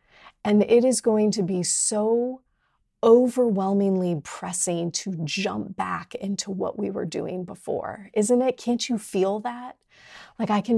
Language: English